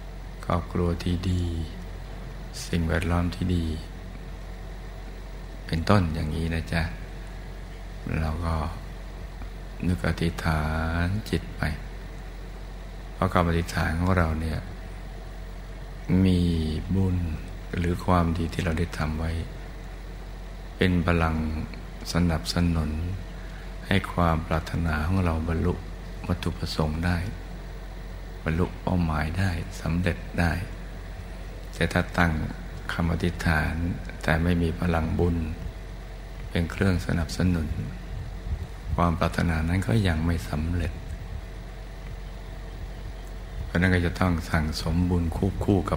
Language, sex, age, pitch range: Thai, male, 60-79, 80-90 Hz